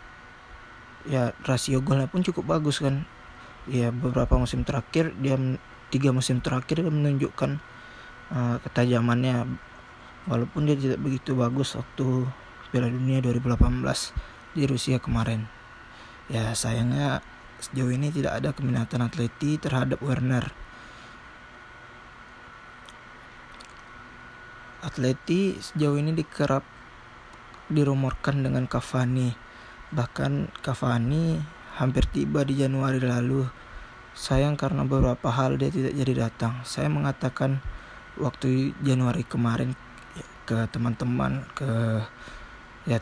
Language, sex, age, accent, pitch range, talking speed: Indonesian, male, 20-39, native, 120-140 Hz, 100 wpm